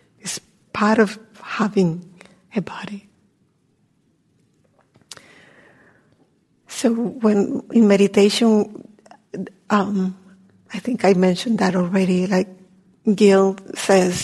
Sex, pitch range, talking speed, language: female, 185-210 Hz, 80 wpm, English